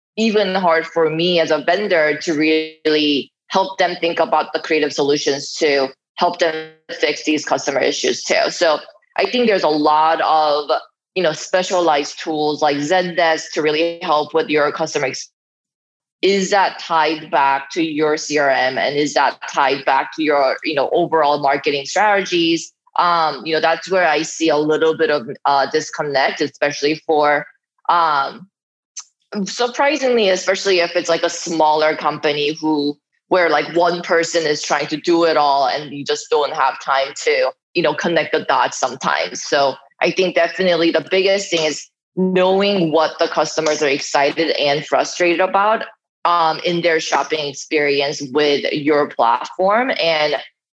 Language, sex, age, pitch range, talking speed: English, female, 20-39, 150-175 Hz, 160 wpm